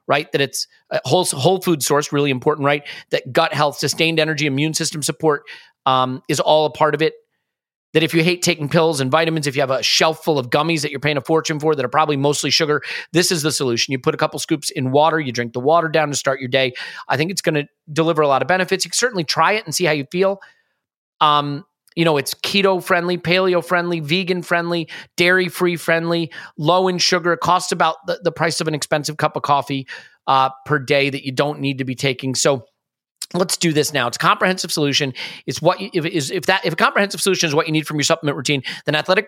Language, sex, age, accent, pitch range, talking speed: English, male, 30-49, American, 145-175 Hz, 240 wpm